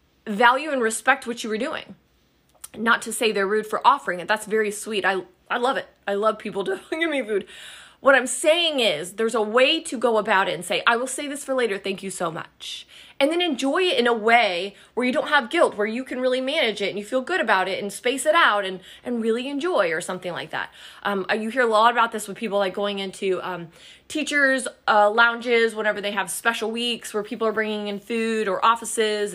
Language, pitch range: English, 205-265 Hz